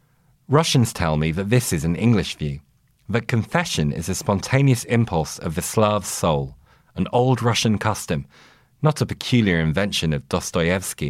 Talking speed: 155 wpm